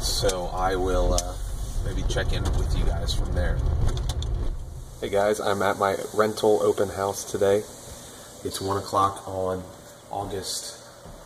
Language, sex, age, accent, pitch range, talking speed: English, male, 30-49, American, 90-115 Hz, 140 wpm